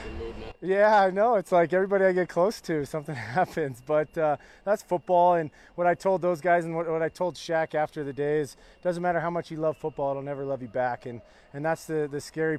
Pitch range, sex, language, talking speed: 150-180 Hz, male, English, 240 wpm